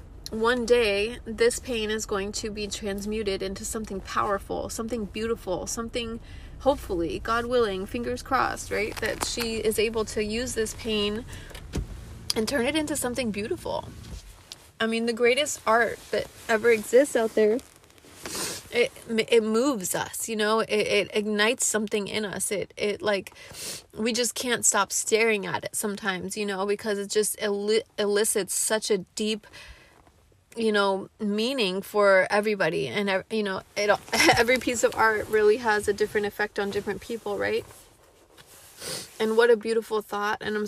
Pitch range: 210-245 Hz